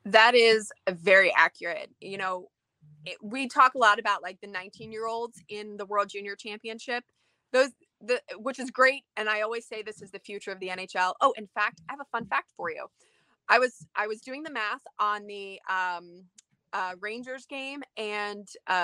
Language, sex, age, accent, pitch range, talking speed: English, female, 20-39, American, 205-255 Hz, 200 wpm